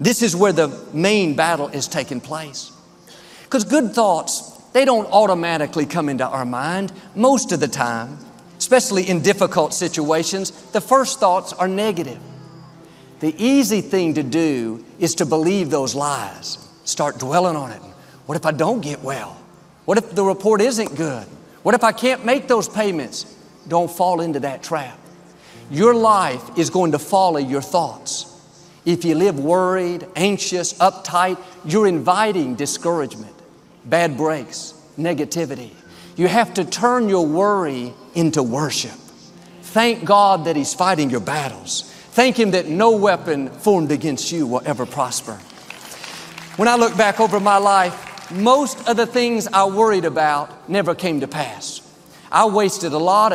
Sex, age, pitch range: male, 50-69, 150-200 Hz